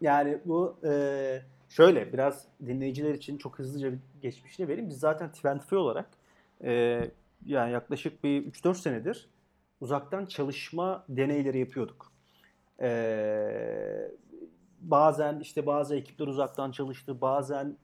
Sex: male